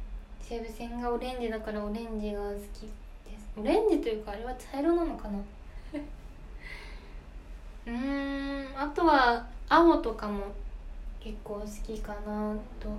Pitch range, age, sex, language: 210-265 Hz, 20-39, female, Japanese